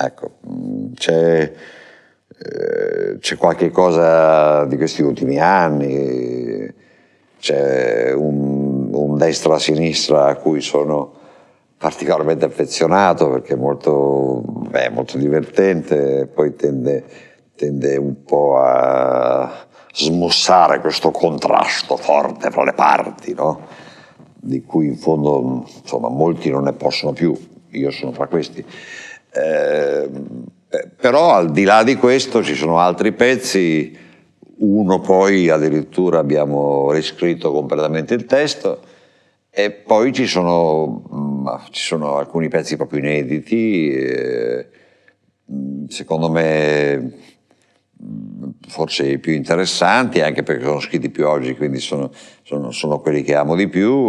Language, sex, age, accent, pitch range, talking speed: Italian, male, 60-79, native, 70-105 Hz, 115 wpm